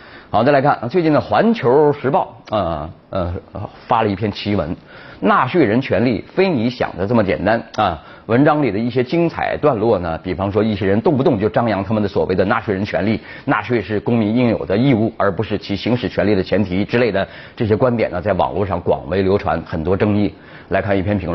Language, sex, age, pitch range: Chinese, male, 30-49, 100-150 Hz